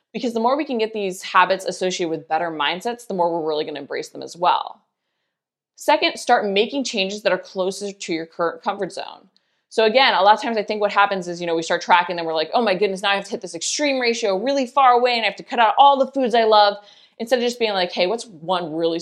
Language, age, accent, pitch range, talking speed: English, 20-39, American, 170-225 Hz, 275 wpm